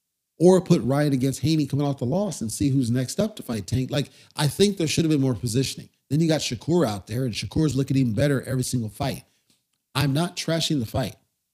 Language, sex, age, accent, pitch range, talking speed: English, male, 40-59, American, 115-145 Hz, 235 wpm